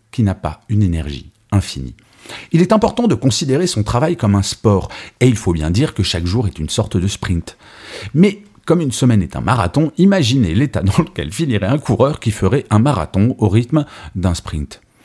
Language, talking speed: French, 205 wpm